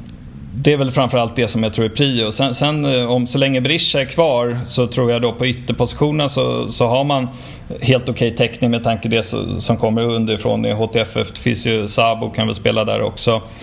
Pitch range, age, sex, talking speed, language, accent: 110-125 Hz, 20-39, male, 220 wpm, Swedish, native